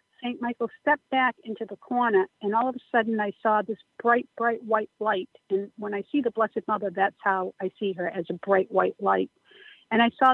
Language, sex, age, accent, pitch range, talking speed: English, female, 50-69, American, 205-245 Hz, 225 wpm